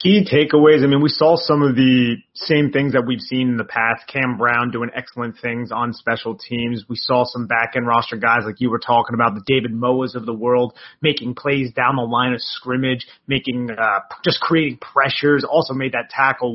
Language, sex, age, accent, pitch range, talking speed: English, male, 30-49, American, 120-145 Hz, 210 wpm